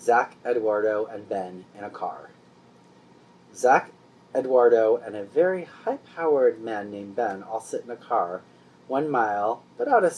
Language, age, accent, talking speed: English, 30-49, American, 155 wpm